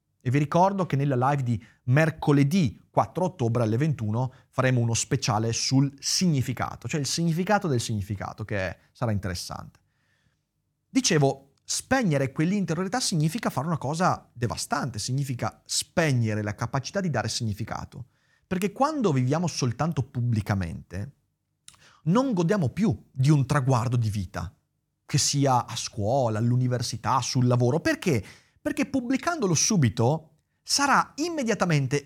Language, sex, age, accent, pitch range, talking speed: Italian, male, 30-49, native, 125-205 Hz, 125 wpm